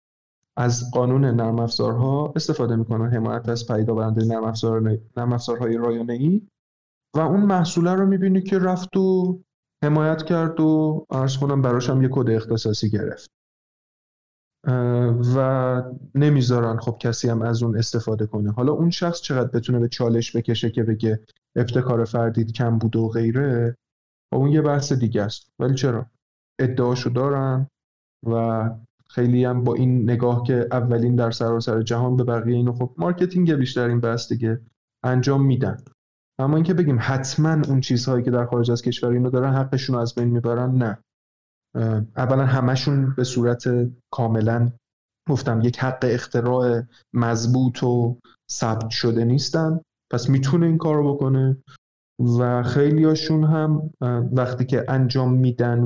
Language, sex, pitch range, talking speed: Persian, male, 115-135 Hz, 145 wpm